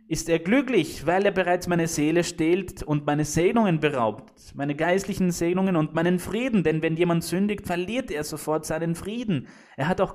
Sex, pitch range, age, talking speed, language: male, 145-190 Hz, 20-39, 185 wpm, German